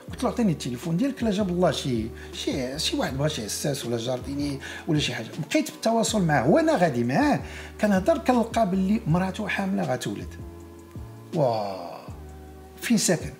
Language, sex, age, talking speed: Arabic, male, 50-69, 160 wpm